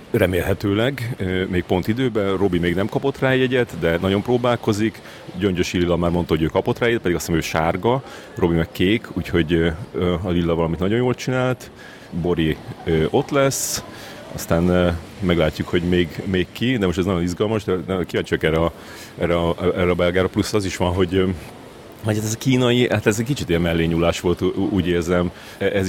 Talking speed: 180 wpm